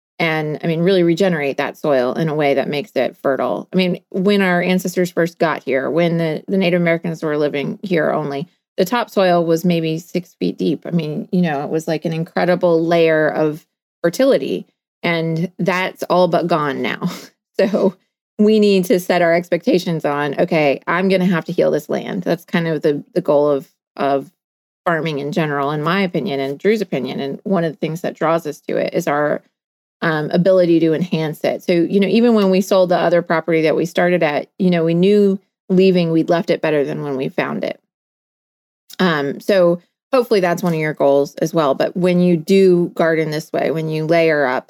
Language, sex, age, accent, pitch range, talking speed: English, female, 30-49, American, 155-185 Hz, 210 wpm